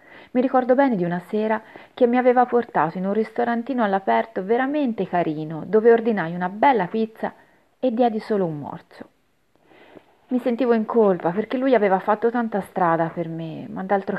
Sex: female